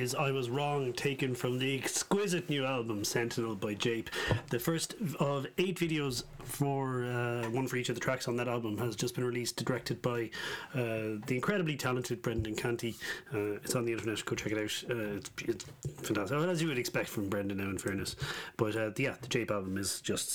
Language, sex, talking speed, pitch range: English, male, 215 wpm, 120-140 Hz